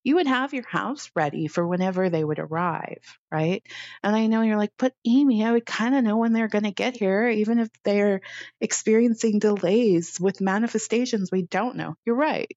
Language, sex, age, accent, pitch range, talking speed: English, female, 30-49, American, 155-230 Hz, 200 wpm